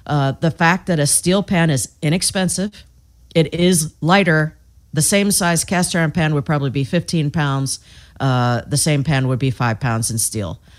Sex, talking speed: female, 185 wpm